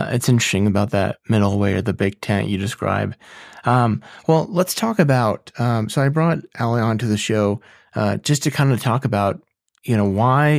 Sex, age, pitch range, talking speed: male, 20-39, 105-130 Hz, 205 wpm